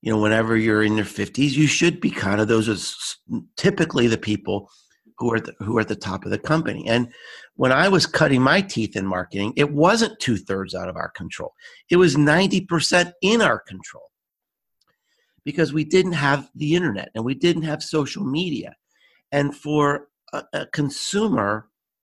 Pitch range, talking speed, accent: 115-180 Hz, 185 wpm, American